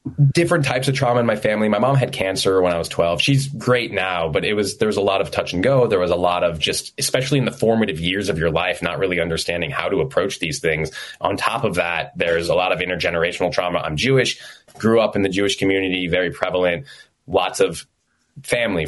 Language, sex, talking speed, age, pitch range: English, male, 235 wpm, 20-39, 90-120 Hz